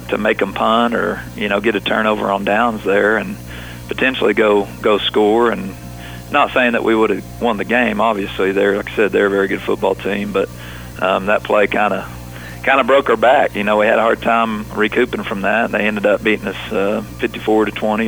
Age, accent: 40-59, American